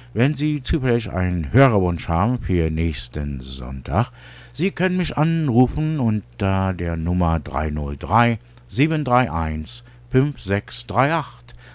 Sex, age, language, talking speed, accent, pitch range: male, 60-79, English, 95 wpm, German, 75-120 Hz